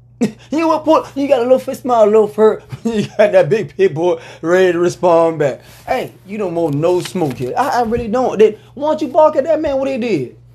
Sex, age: male, 20-39